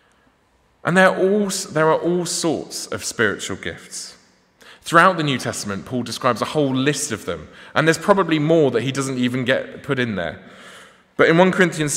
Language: English